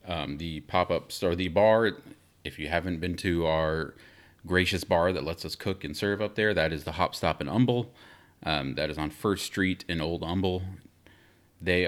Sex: male